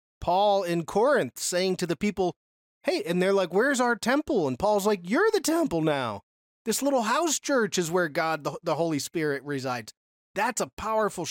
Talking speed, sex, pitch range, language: 190 wpm, male, 140-205 Hz, English